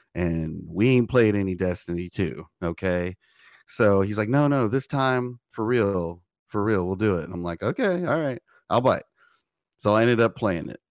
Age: 30-49